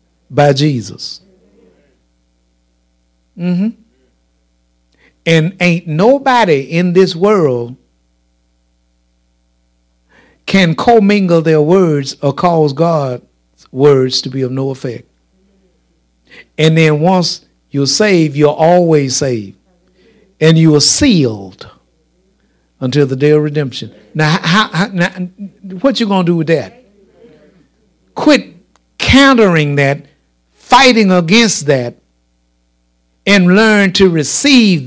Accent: American